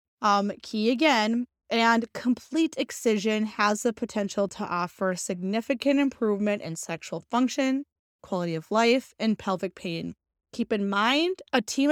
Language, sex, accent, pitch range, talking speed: English, female, American, 200-235 Hz, 135 wpm